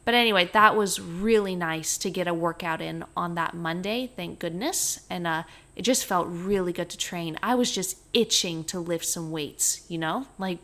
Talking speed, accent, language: 205 wpm, American, English